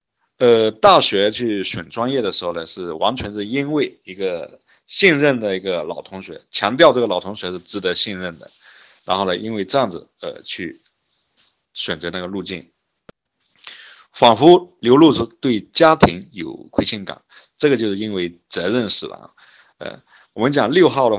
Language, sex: Chinese, male